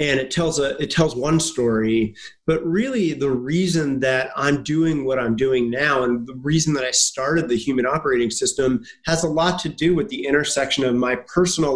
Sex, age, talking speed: male, 30-49, 205 wpm